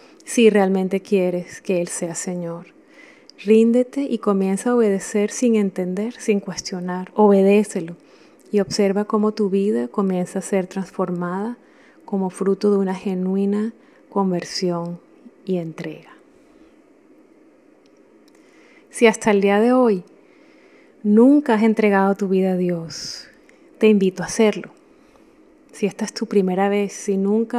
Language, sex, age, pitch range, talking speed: Spanish, female, 30-49, 185-225 Hz, 130 wpm